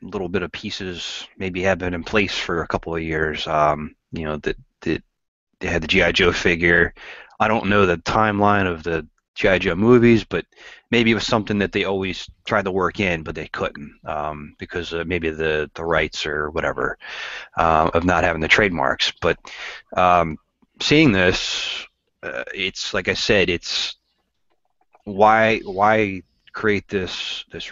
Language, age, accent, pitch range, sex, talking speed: English, 30-49, American, 90-110 Hz, male, 175 wpm